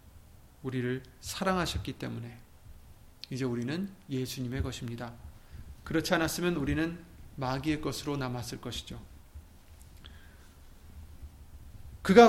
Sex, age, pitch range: male, 30-49, 115-165 Hz